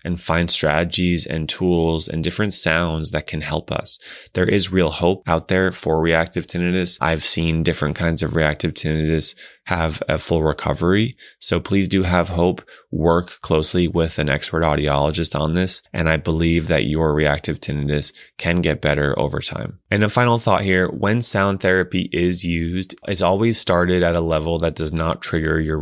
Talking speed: 180 wpm